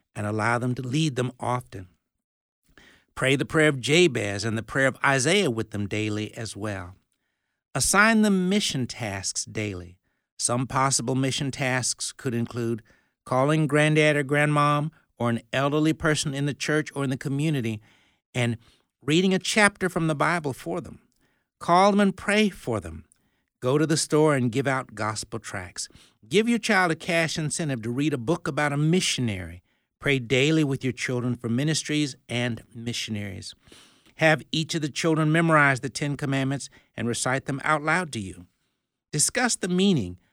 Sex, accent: male, American